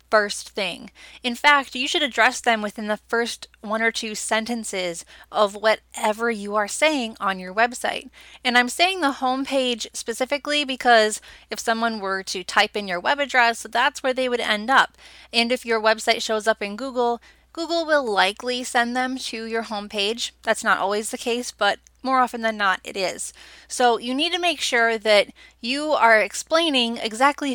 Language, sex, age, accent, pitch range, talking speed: English, female, 20-39, American, 215-270 Hz, 185 wpm